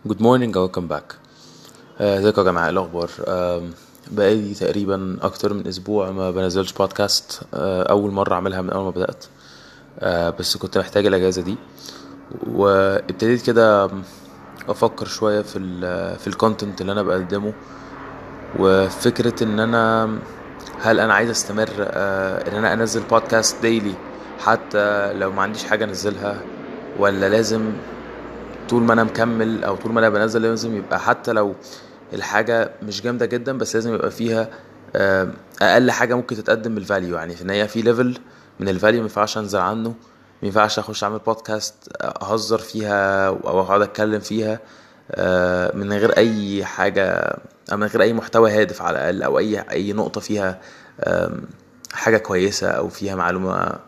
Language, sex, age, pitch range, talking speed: Arabic, male, 20-39, 95-110 Hz, 145 wpm